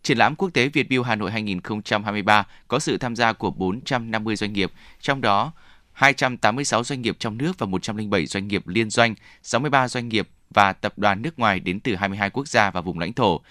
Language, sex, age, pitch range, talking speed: Vietnamese, male, 20-39, 100-125 Hz, 210 wpm